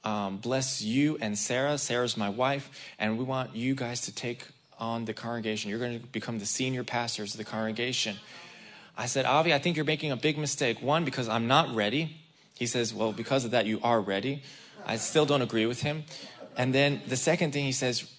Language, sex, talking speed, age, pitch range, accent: English, male, 215 wpm, 20-39, 115-140 Hz, American